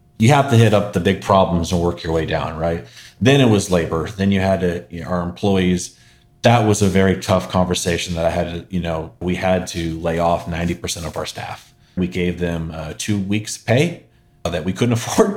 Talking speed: 225 wpm